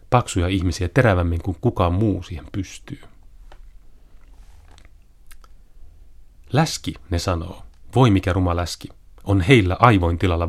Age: 30-49